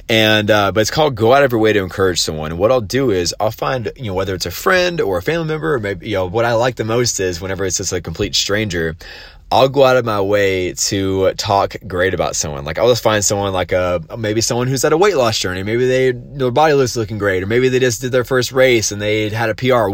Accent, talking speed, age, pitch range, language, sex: American, 280 wpm, 20-39, 90-120 Hz, English, male